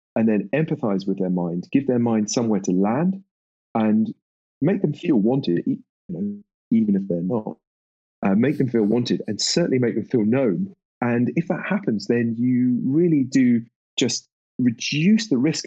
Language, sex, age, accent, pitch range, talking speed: English, male, 30-49, British, 95-125 Hz, 170 wpm